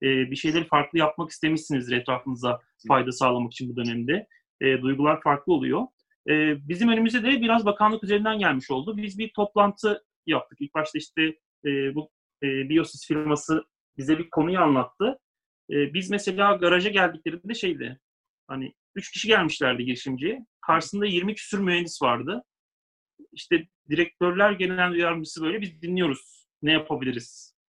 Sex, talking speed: male, 145 wpm